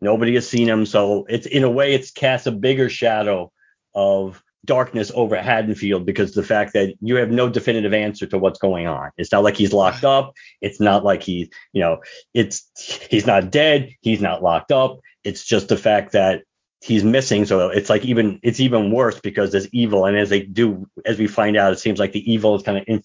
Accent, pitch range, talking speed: American, 100-125 Hz, 220 wpm